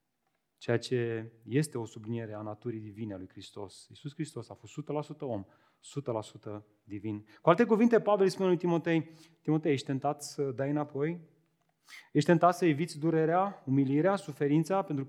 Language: Romanian